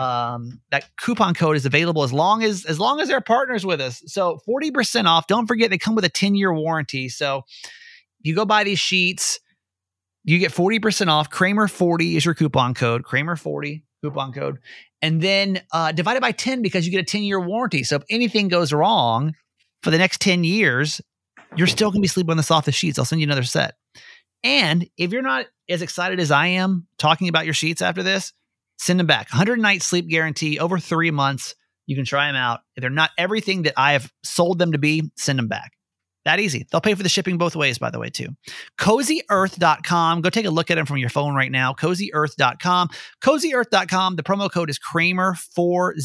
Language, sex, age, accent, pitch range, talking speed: English, male, 30-49, American, 145-190 Hz, 210 wpm